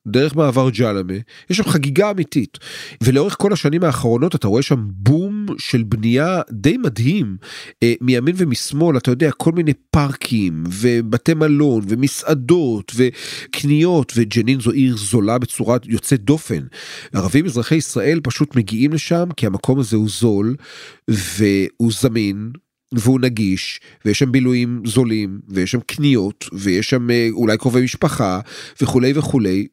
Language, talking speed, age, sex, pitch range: Hebrew, 135 wpm, 40-59, male, 110-145 Hz